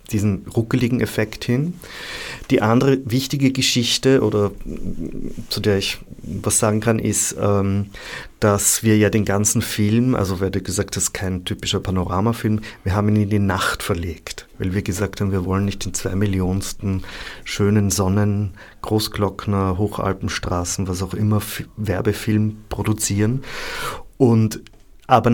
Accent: German